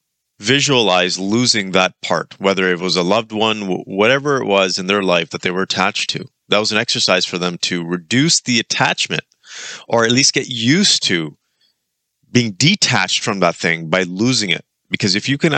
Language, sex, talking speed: English, male, 190 wpm